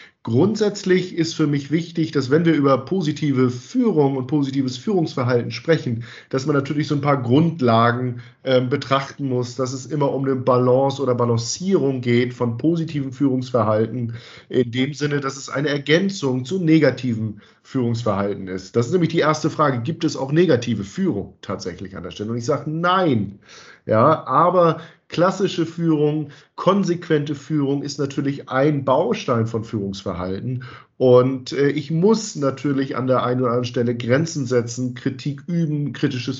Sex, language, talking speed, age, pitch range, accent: male, German, 155 wpm, 50-69, 120-150 Hz, German